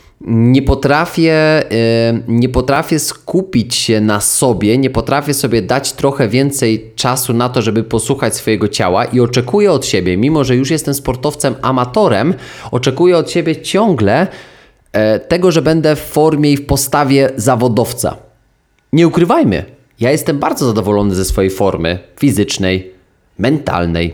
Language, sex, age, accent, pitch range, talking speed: Polish, male, 20-39, native, 110-140 Hz, 135 wpm